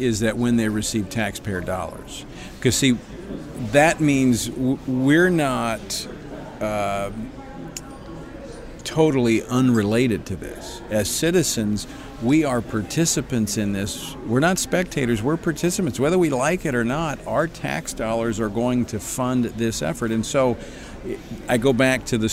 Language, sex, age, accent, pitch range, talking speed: English, male, 50-69, American, 105-130 Hz, 140 wpm